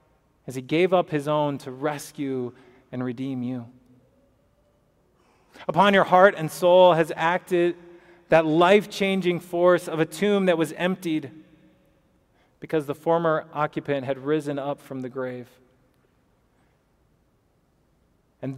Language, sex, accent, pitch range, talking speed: English, male, American, 135-170 Hz, 125 wpm